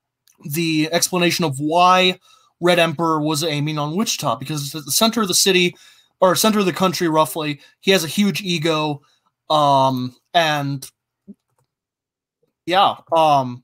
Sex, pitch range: male, 140-175 Hz